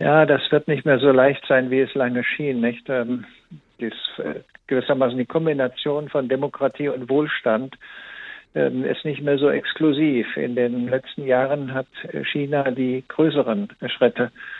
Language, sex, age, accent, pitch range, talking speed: German, male, 60-79, German, 125-145 Hz, 135 wpm